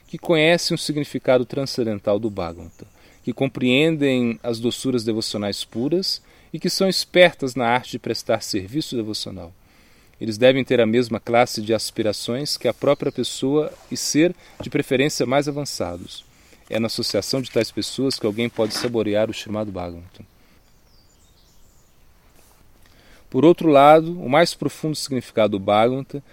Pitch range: 110-140 Hz